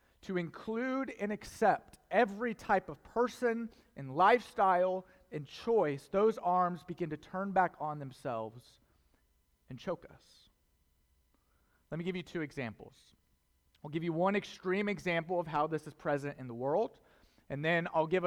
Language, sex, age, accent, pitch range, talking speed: English, male, 30-49, American, 145-190 Hz, 155 wpm